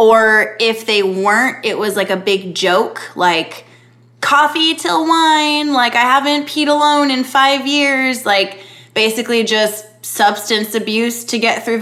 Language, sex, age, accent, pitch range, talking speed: English, female, 20-39, American, 190-235 Hz, 150 wpm